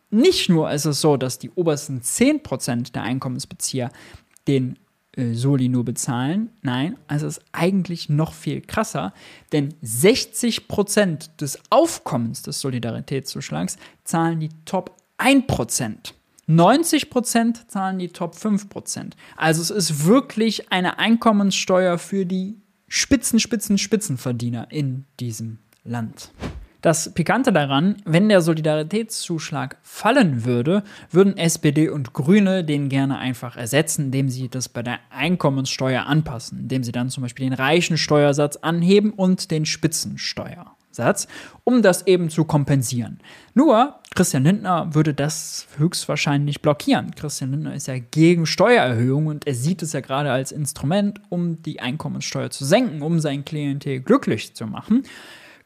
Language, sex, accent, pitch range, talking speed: German, male, German, 135-190 Hz, 135 wpm